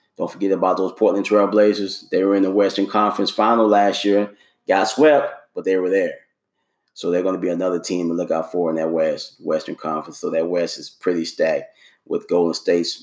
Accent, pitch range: American, 90-110 Hz